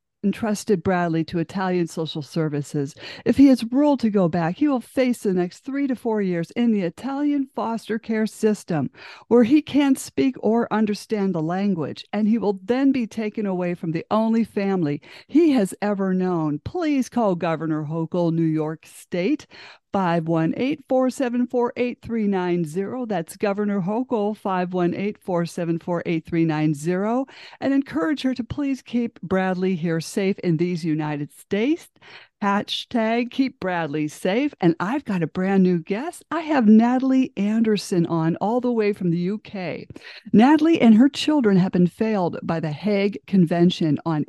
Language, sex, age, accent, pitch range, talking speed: English, female, 50-69, American, 170-240 Hz, 150 wpm